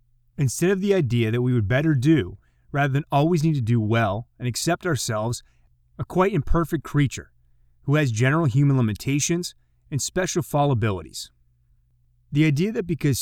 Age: 30-49